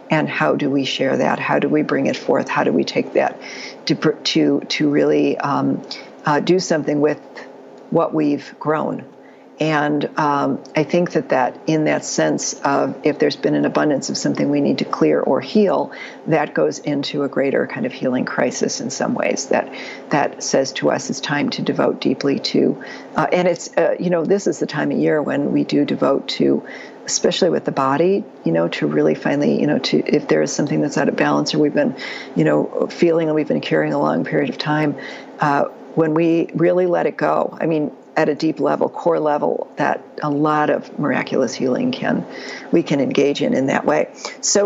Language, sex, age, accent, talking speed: English, female, 50-69, American, 210 wpm